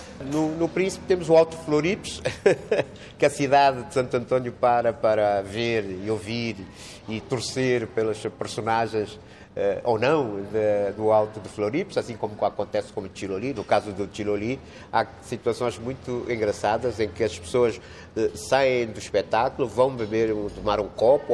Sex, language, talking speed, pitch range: male, Portuguese, 155 wpm, 100-120 Hz